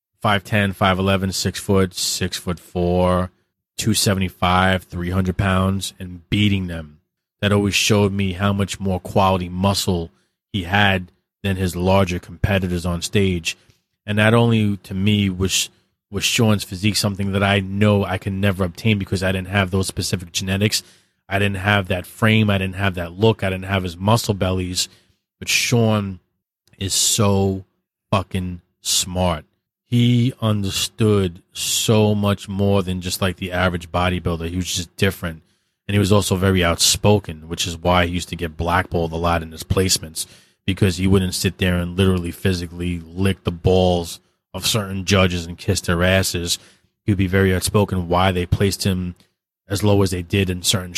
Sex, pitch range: male, 90-100 Hz